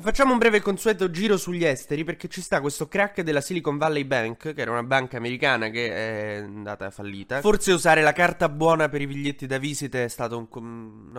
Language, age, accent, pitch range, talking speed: Italian, 20-39, native, 115-155 Hz, 210 wpm